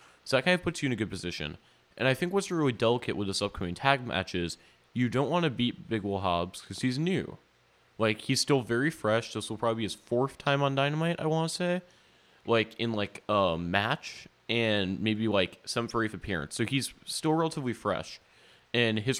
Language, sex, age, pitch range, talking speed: English, male, 20-39, 100-140 Hz, 215 wpm